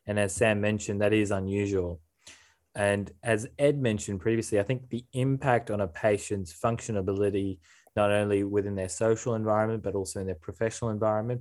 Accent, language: Australian, English